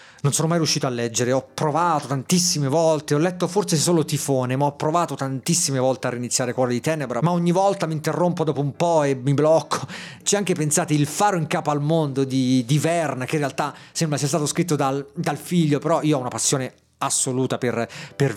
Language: Italian